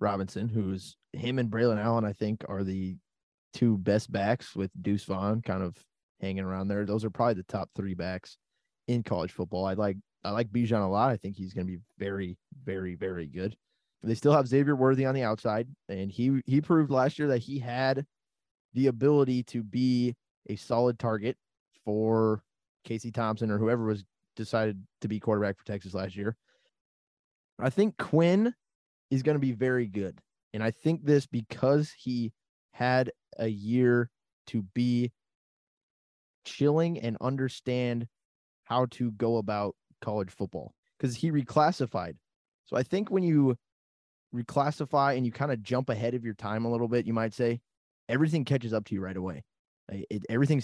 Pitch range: 105-130 Hz